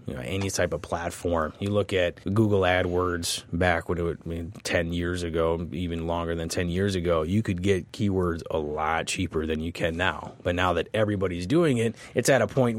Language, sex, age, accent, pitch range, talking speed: English, male, 30-49, American, 90-115 Hz, 215 wpm